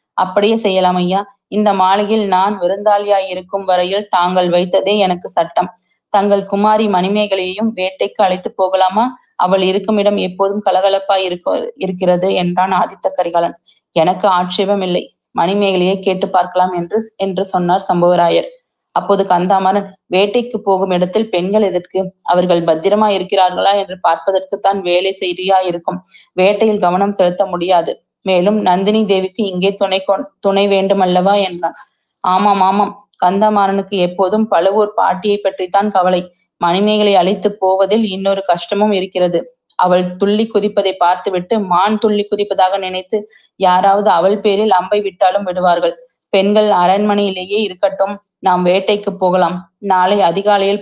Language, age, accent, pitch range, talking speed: Tamil, 20-39, native, 185-205 Hz, 120 wpm